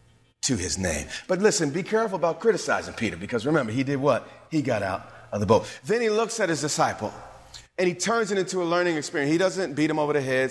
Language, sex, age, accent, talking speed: English, male, 40-59, American, 240 wpm